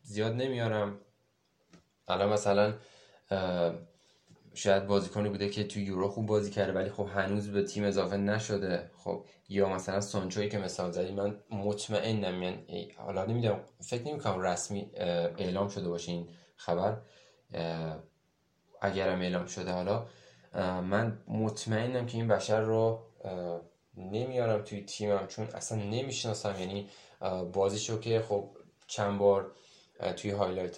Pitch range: 95-110 Hz